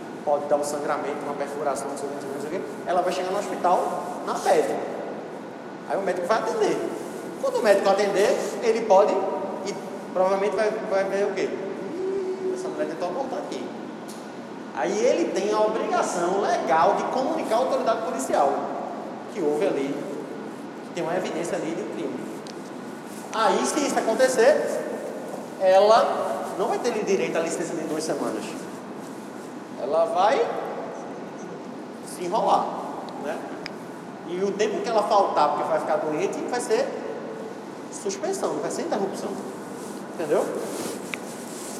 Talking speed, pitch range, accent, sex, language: 135 wpm, 180-220 Hz, Brazilian, male, Portuguese